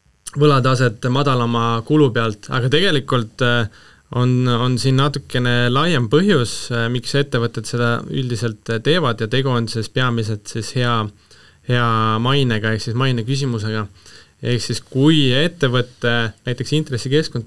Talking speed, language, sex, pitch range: 125 wpm, English, male, 115-140 Hz